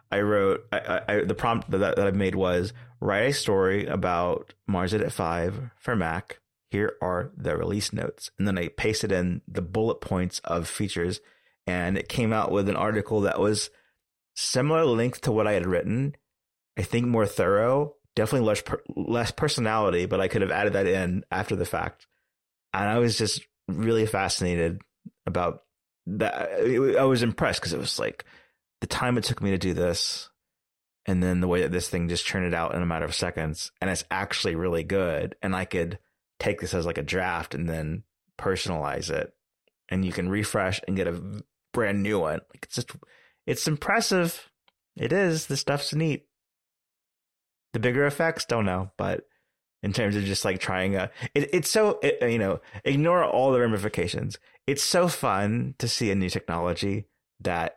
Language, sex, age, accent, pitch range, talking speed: English, male, 30-49, American, 90-120 Hz, 185 wpm